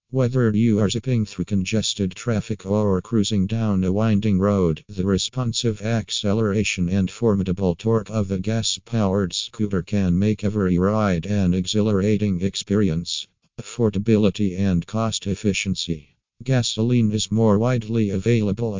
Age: 50-69